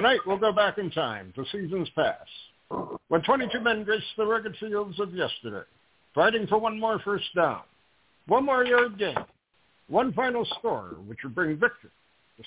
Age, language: 60-79, English